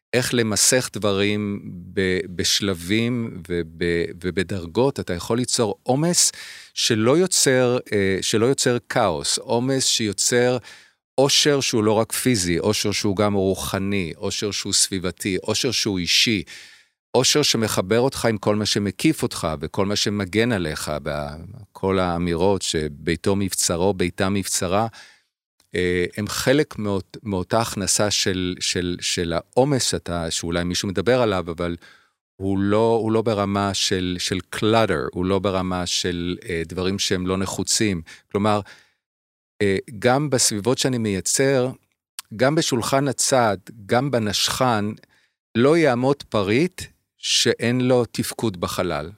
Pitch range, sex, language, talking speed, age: 90-120 Hz, male, Hebrew, 120 wpm, 50-69